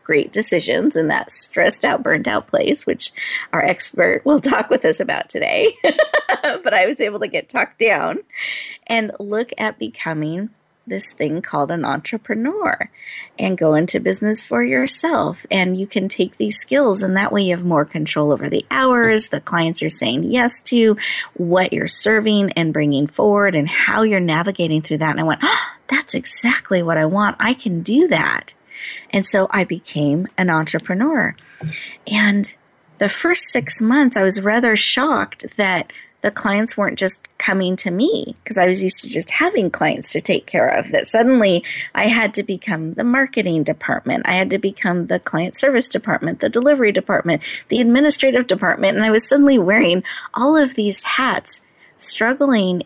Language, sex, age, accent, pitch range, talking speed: English, female, 30-49, American, 175-235 Hz, 175 wpm